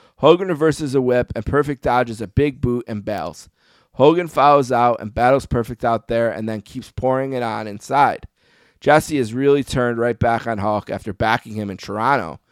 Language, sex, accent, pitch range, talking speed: English, male, American, 110-135 Hz, 190 wpm